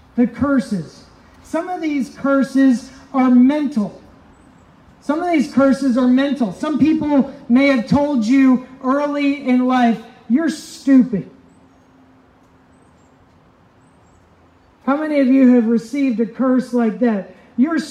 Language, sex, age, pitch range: English, male, 40-59, 220-280 Hz